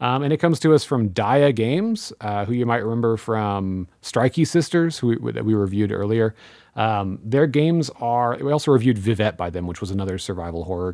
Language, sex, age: English, male, 30-49